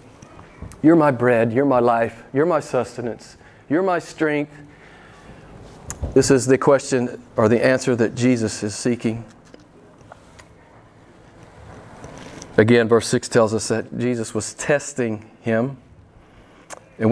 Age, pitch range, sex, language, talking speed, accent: 40-59, 115-160 Hz, male, English, 120 wpm, American